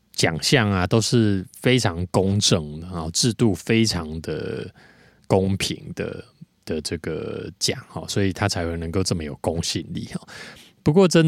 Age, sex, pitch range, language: 20-39, male, 85-115 Hz, Chinese